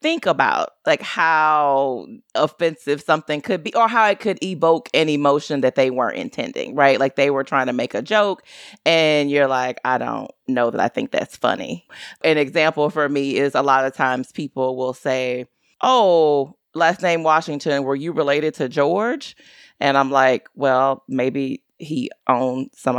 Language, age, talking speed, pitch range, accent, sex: English, 30-49, 175 wpm, 145-205 Hz, American, female